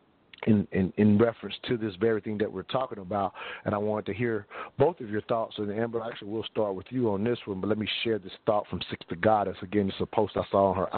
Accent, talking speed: American, 270 wpm